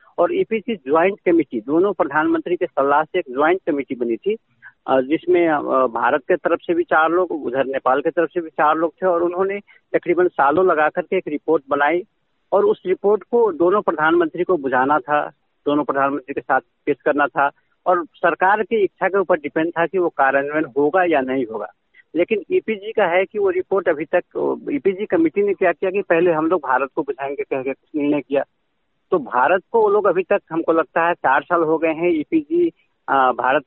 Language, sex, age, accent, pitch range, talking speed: Hindi, male, 50-69, native, 150-190 Hz, 205 wpm